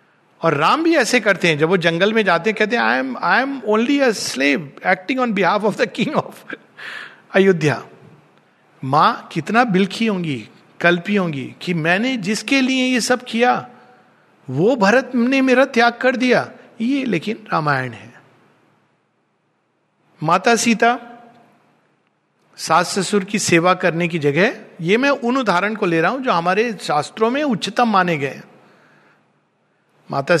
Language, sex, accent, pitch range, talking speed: Hindi, male, native, 160-225 Hz, 155 wpm